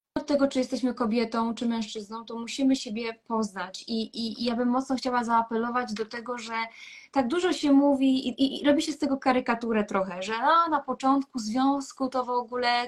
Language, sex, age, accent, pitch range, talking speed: Polish, female, 20-39, native, 230-275 Hz, 195 wpm